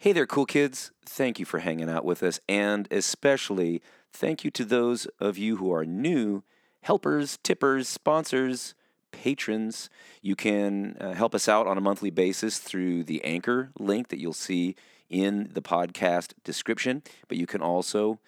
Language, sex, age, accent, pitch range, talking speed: English, male, 40-59, American, 90-120 Hz, 165 wpm